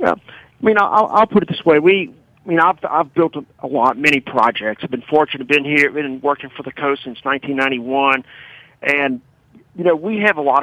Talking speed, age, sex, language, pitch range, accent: 225 wpm, 40-59, male, English, 135-165 Hz, American